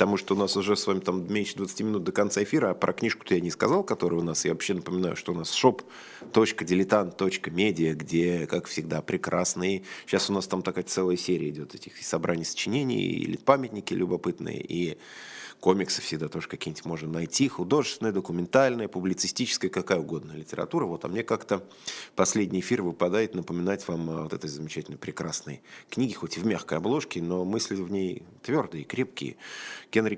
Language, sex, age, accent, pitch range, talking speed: Russian, male, 20-39, native, 80-100 Hz, 175 wpm